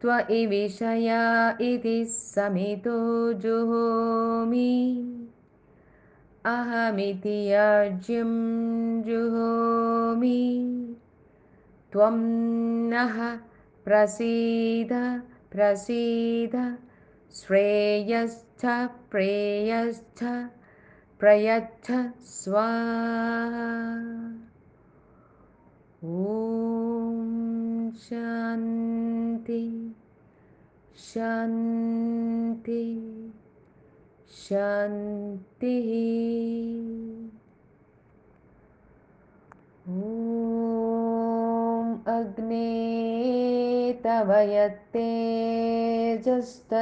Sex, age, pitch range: female, 20-39, 225-230 Hz